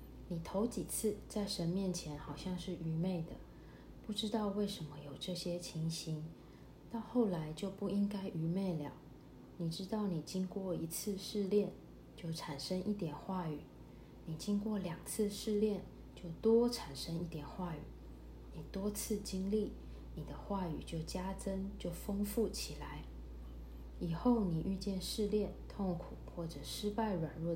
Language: Chinese